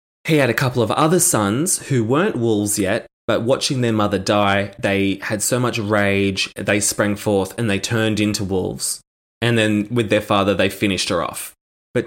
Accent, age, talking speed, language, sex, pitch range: Australian, 20-39, 195 wpm, English, male, 100-115 Hz